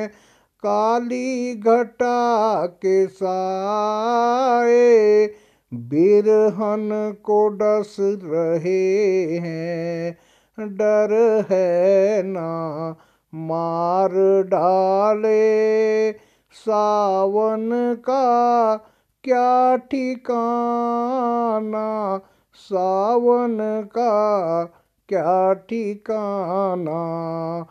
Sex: male